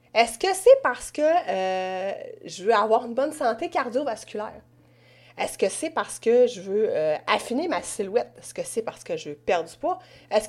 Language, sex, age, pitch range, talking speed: French, female, 30-49, 215-310 Hz, 200 wpm